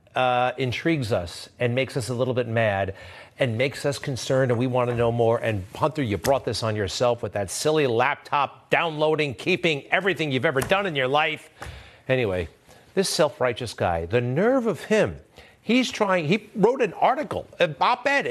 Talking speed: 185 wpm